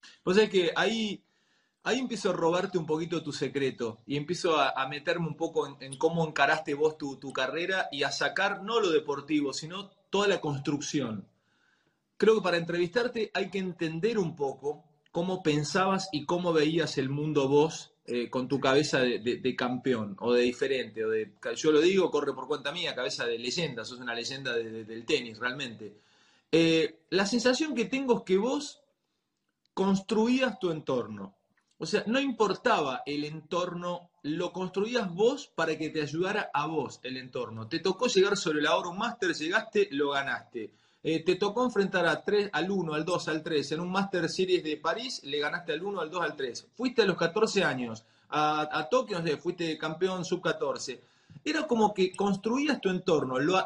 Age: 30-49